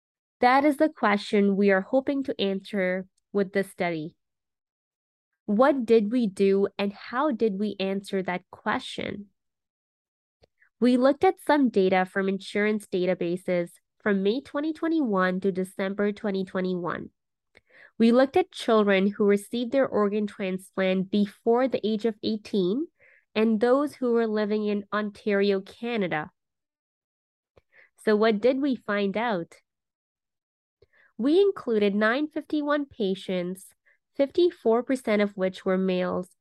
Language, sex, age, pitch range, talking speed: English, female, 20-39, 195-250 Hz, 120 wpm